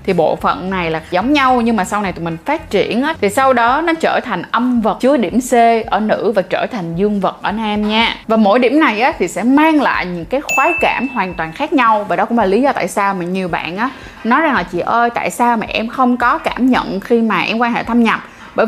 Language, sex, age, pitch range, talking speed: Vietnamese, female, 20-39, 185-275 Hz, 280 wpm